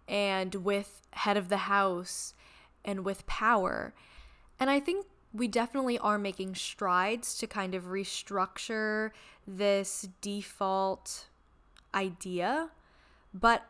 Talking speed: 110 wpm